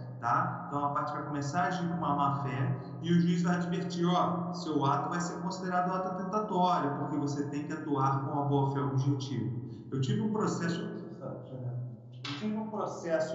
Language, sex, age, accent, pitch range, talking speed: Portuguese, male, 40-59, Brazilian, 140-170 Hz, 205 wpm